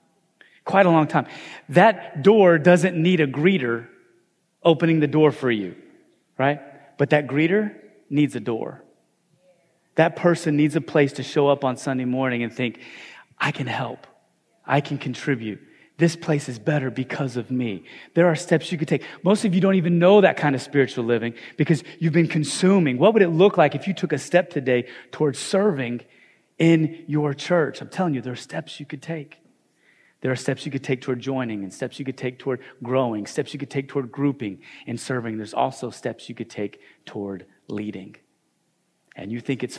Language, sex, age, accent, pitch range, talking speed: English, male, 30-49, American, 115-160 Hz, 195 wpm